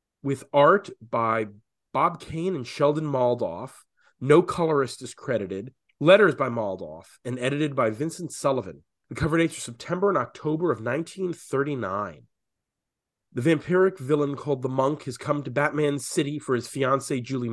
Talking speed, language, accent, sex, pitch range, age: 150 wpm, English, American, male, 135-180 Hz, 30-49